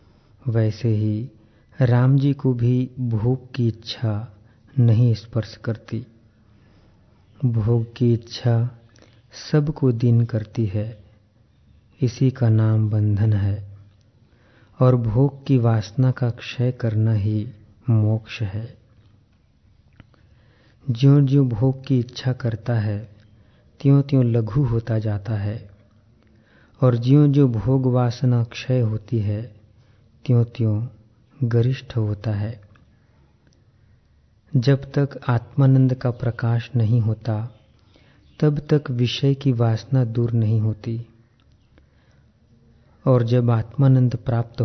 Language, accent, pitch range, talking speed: Hindi, native, 110-125 Hz, 105 wpm